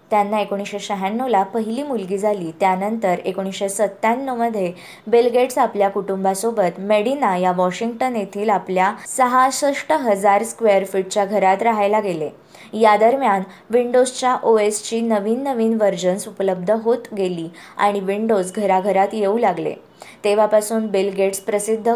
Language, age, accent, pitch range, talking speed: Marathi, 20-39, native, 195-230 Hz, 120 wpm